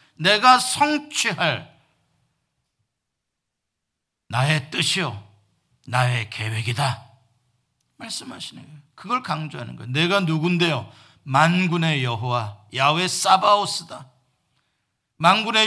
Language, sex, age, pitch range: Korean, male, 50-69, 135-220 Hz